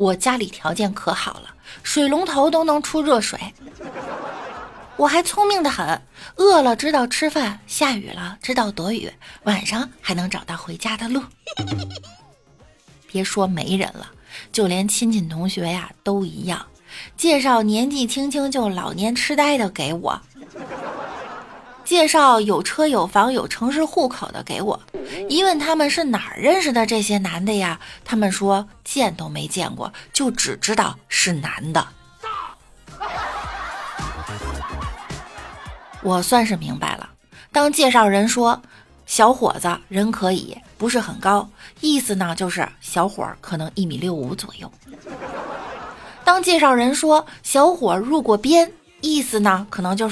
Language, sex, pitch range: Chinese, female, 190-285 Hz